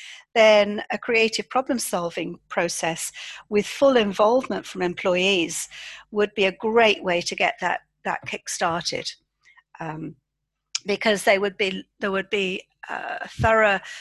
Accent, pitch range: British, 180-220 Hz